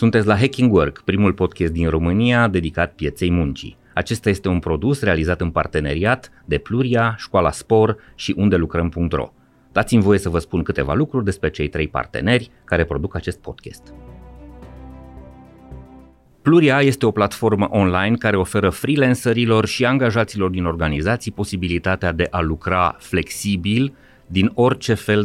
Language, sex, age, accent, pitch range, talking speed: Romanian, male, 30-49, native, 85-110 Hz, 140 wpm